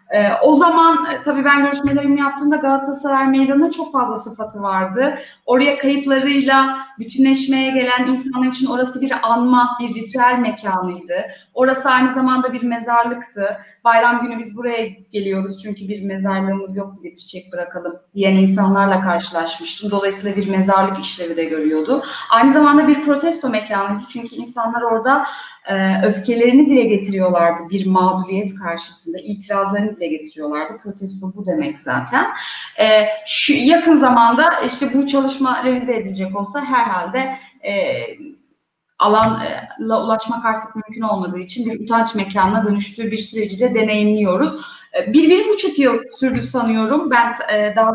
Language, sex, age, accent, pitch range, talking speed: Turkish, female, 30-49, native, 200-270 Hz, 135 wpm